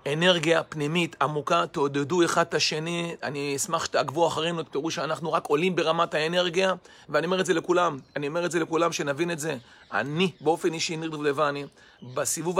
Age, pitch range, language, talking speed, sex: 40-59, 165-195 Hz, Hebrew, 170 wpm, male